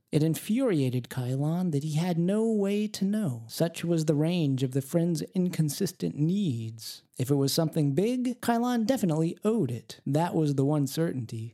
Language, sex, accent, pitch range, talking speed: English, male, American, 135-180 Hz, 170 wpm